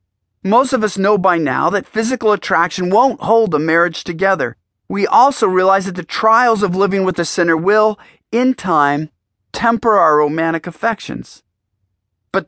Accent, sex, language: American, male, English